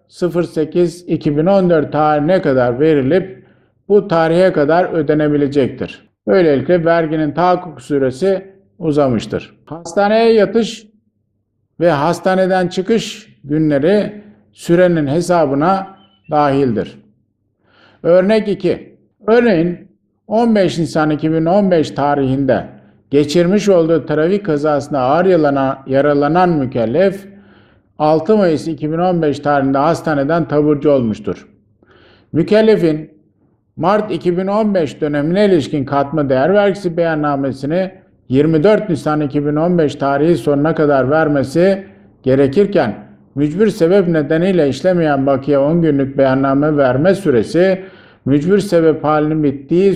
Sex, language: male, Turkish